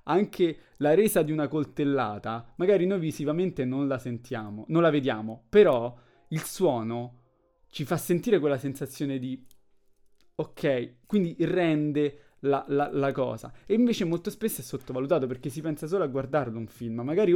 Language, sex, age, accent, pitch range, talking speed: Italian, male, 20-39, native, 125-165 Hz, 160 wpm